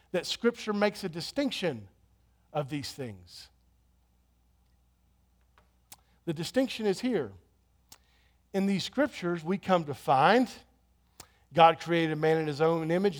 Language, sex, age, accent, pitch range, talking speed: English, male, 50-69, American, 115-185 Hz, 125 wpm